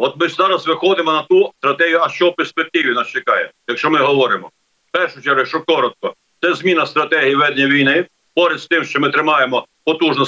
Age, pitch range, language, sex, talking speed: 50-69, 150-185 Hz, Ukrainian, male, 195 wpm